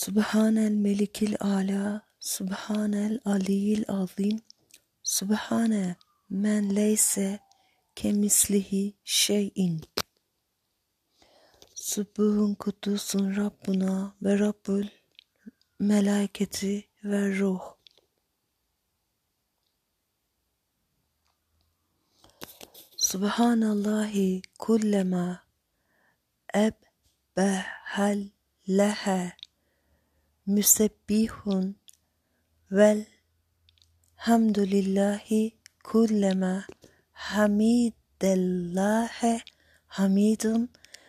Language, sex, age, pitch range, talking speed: Turkish, female, 40-59, 190-215 Hz, 35 wpm